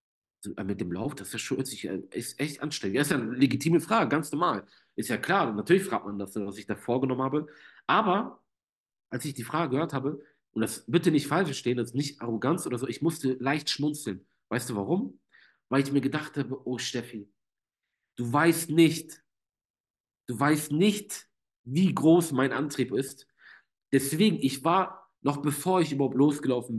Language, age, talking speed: German, 40-59, 180 wpm